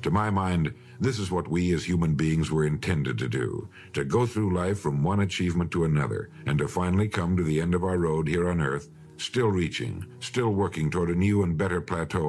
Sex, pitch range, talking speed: male, 80-110 Hz, 225 wpm